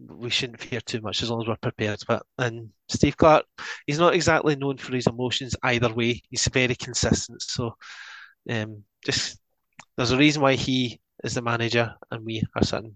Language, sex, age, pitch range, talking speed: English, male, 20-39, 115-135 Hz, 190 wpm